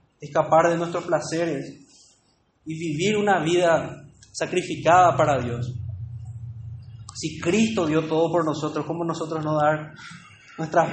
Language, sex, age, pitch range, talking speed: Spanish, male, 20-39, 140-190 Hz, 120 wpm